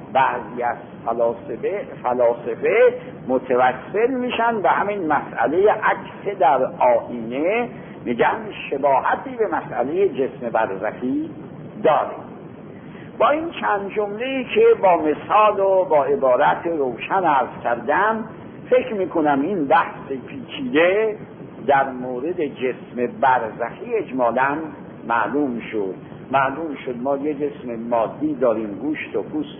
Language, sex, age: Arabic, male, 60-79